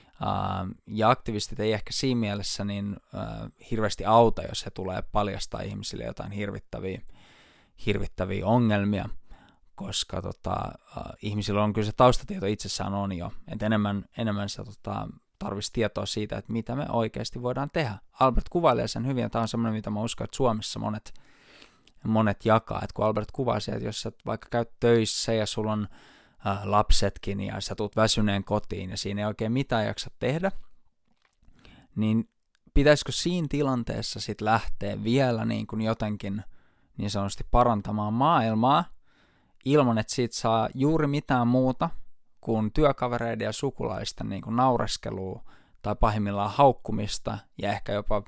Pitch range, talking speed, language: 100-120 Hz, 150 wpm, Finnish